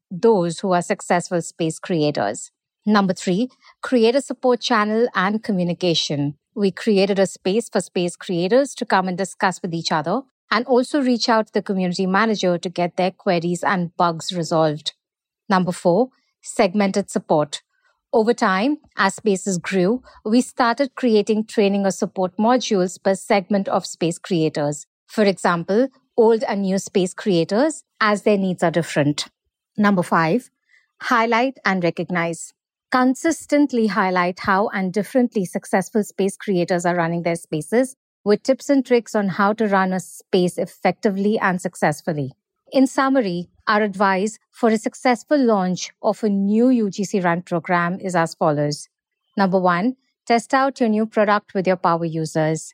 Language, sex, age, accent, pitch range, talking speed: English, female, 50-69, Indian, 180-230 Hz, 150 wpm